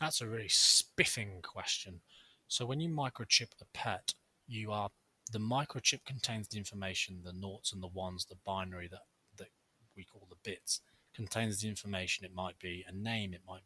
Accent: British